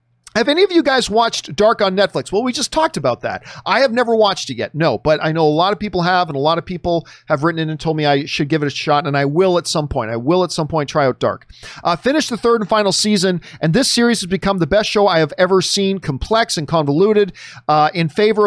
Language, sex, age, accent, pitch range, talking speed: English, male, 40-59, American, 145-200 Hz, 280 wpm